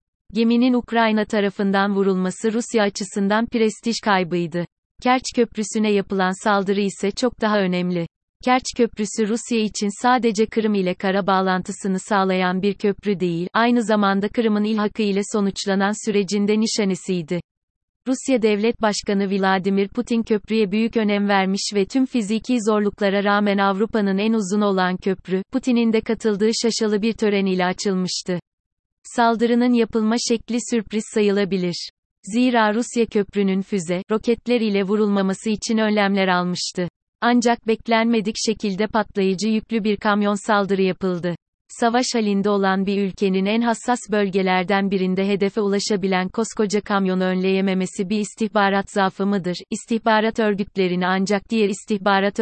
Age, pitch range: 30-49, 195-225 Hz